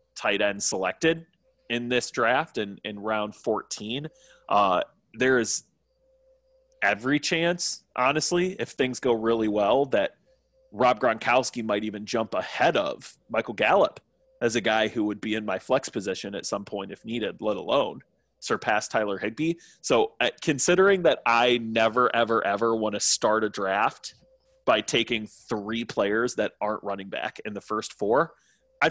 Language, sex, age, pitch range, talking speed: English, male, 20-39, 110-165 Hz, 160 wpm